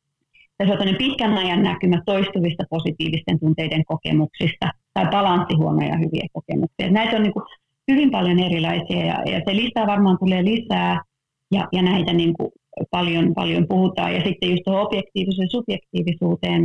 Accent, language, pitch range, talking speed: native, Finnish, 160-190 Hz, 130 wpm